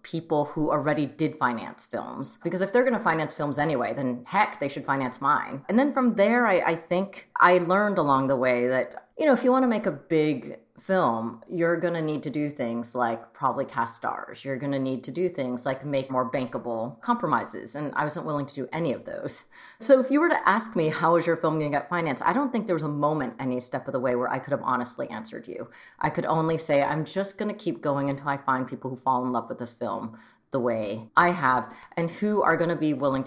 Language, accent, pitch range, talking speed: English, American, 130-175 Hz, 255 wpm